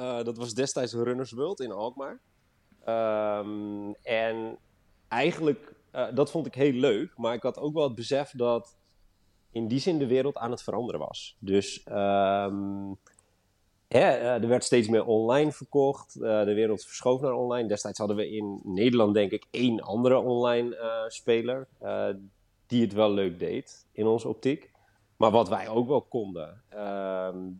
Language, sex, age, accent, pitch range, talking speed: Dutch, male, 30-49, Dutch, 100-120 Hz, 160 wpm